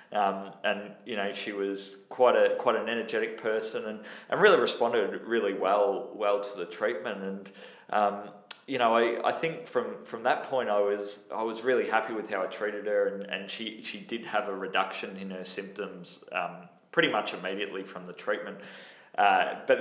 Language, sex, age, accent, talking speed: English, male, 20-39, Australian, 195 wpm